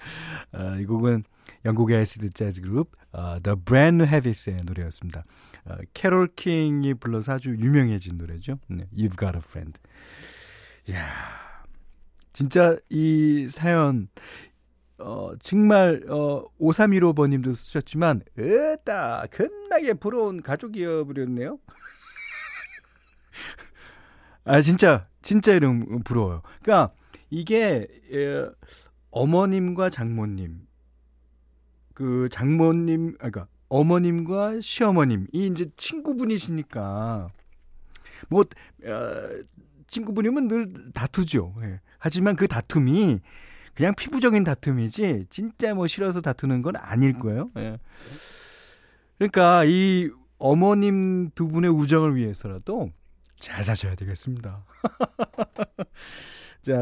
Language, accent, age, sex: Korean, native, 40-59, male